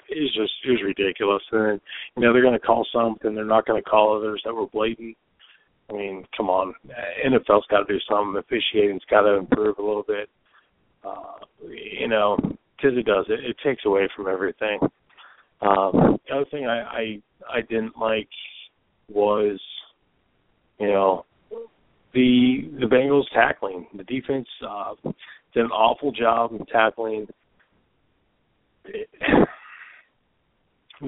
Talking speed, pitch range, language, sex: 150 wpm, 105-125 Hz, English, male